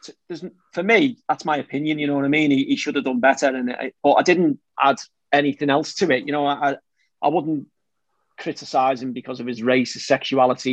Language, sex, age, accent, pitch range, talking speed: English, male, 30-49, British, 125-150 Hz, 200 wpm